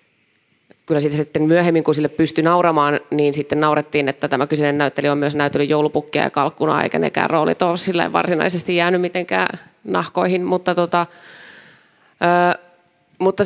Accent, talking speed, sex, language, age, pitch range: native, 145 wpm, female, Finnish, 30-49, 150-175 Hz